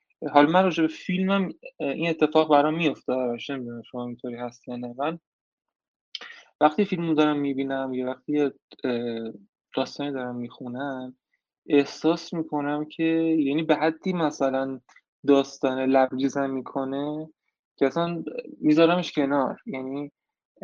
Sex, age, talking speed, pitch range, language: male, 20-39, 110 wpm, 130-160 Hz, Persian